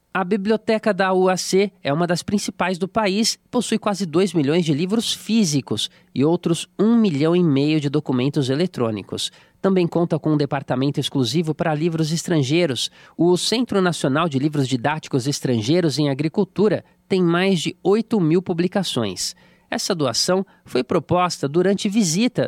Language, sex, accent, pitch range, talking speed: Portuguese, male, Brazilian, 145-190 Hz, 150 wpm